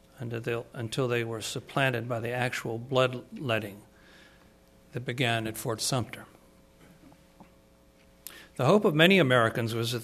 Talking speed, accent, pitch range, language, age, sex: 120 wpm, American, 105-135 Hz, English, 60-79, male